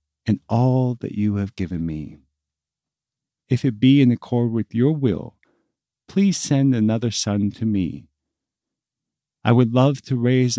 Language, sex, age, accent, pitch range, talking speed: English, male, 50-69, American, 95-130 Hz, 145 wpm